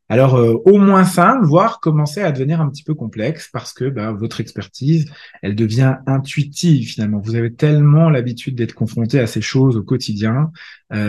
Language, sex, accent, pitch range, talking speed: French, male, French, 115-160 Hz, 185 wpm